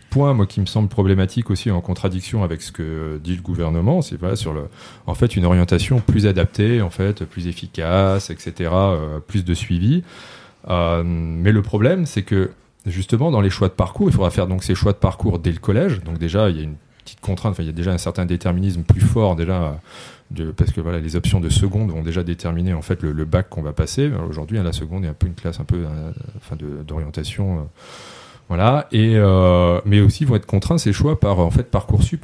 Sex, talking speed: male, 235 wpm